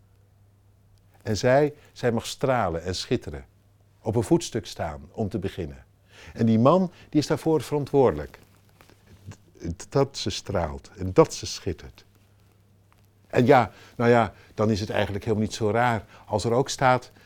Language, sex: Dutch, male